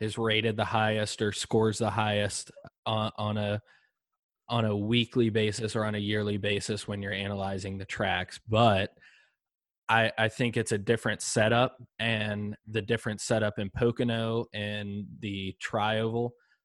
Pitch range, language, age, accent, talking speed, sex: 105-120 Hz, English, 20-39, American, 150 wpm, male